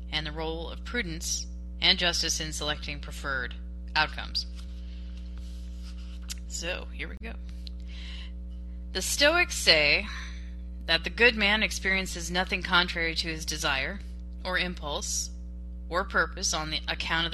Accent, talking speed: American, 125 wpm